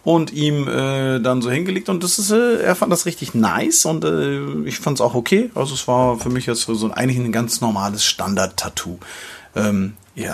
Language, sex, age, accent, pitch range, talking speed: German, male, 40-59, German, 115-160 Hz, 215 wpm